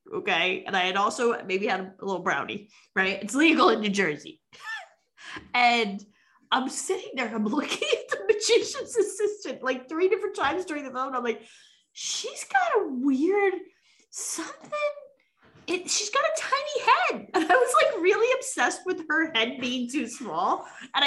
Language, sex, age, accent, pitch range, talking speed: English, female, 20-39, American, 220-355 Hz, 170 wpm